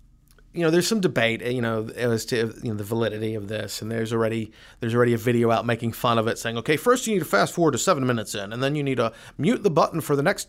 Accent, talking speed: American, 285 wpm